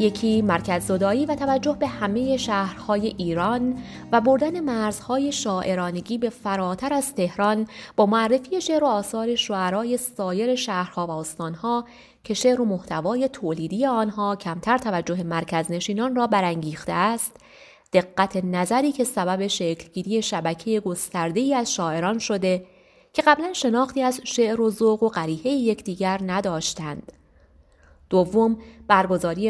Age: 30-49